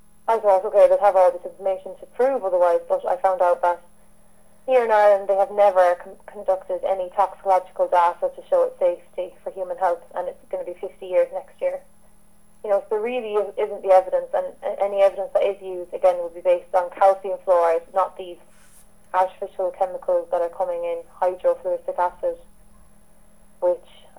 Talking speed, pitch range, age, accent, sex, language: 185 wpm, 180-255 Hz, 20-39, Irish, female, English